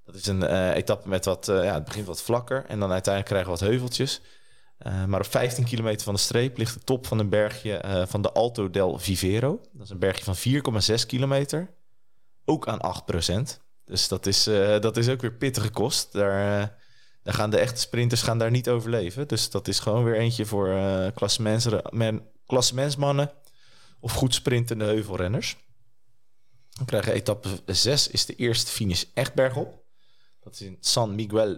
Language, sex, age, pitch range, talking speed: Dutch, male, 20-39, 95-125 Hz, 190 wpm